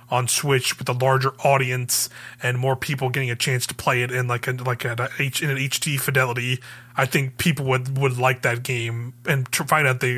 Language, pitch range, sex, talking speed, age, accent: English, 125-150 Hz, male, 220 wpm, 20-39, American